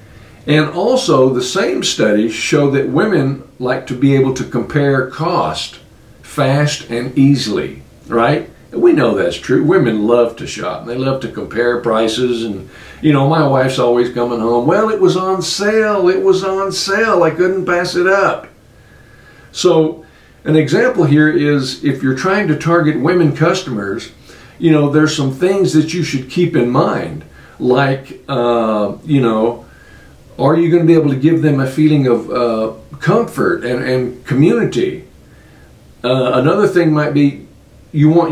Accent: American